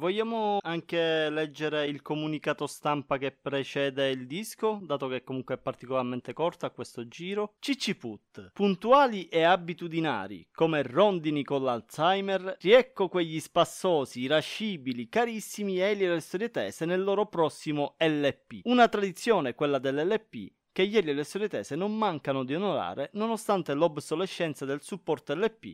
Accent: native